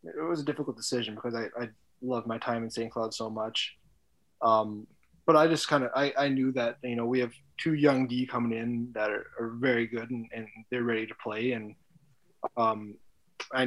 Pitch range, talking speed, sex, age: 115-130 Hz, 215 wpm, male, 20-39